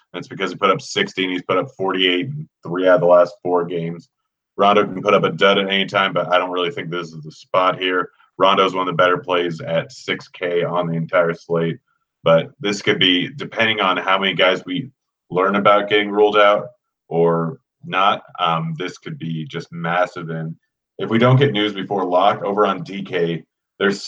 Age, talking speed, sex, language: 30-49, 210 wpm, male, English